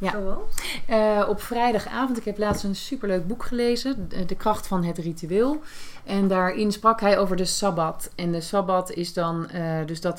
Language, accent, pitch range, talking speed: Dutch, Dutch, 160-205 Hz, 185 wpm